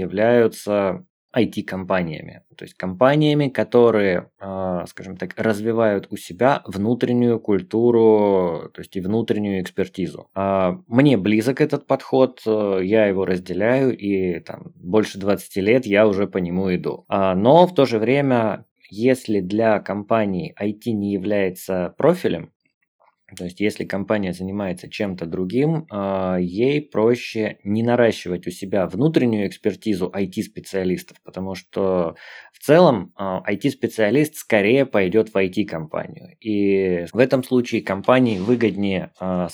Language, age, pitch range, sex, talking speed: Russian, 20-39, 95-115 Hz, male, 125 wpm